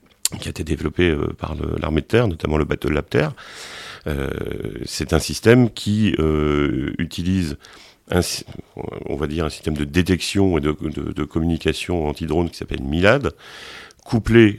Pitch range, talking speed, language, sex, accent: 80-95 Hz, 165 wpm, French, male, French